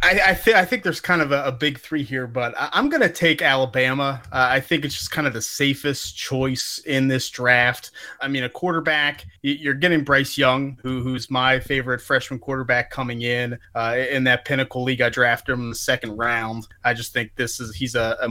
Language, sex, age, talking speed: English, male, 30-49, 225 wpm